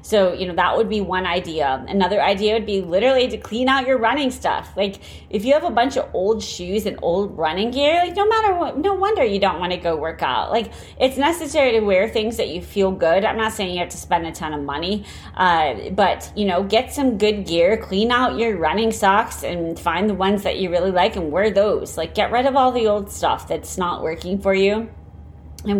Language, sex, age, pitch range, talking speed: English, female, 30-49, 170-220 Hz, 240 wpm